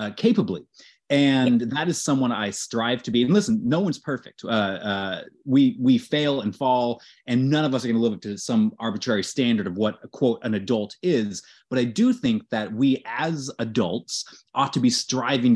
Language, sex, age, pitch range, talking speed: English, male, 30-49, 105-140 Hz, 210 wpm